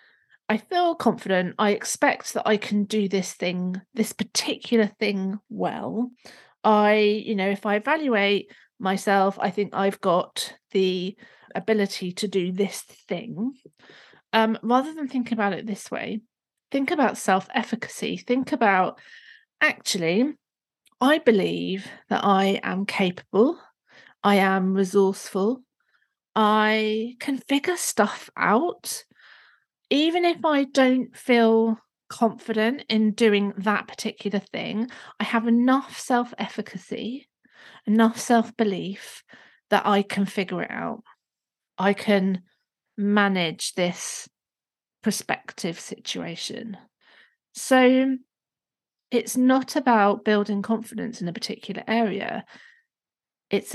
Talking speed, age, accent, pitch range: 110 wpm, 40-59, British, 200-240 Hz